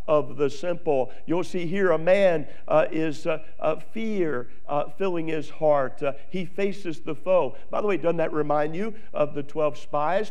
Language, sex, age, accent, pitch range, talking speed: English, male, 50-69, American, 150-190 Hz, 190 wpm